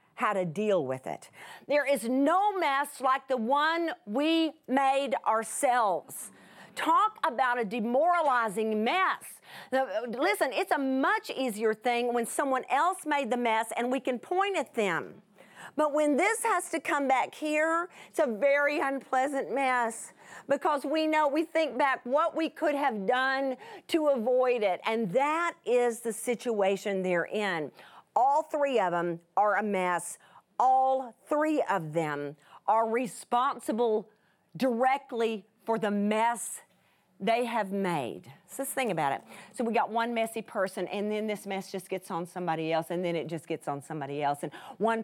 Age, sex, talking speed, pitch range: 40-59, female, 165 wpm, 195-265 Hz